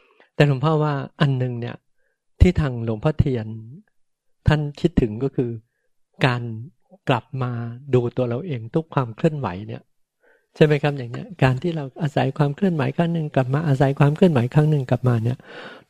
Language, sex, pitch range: Thai, male, 125-155 Hz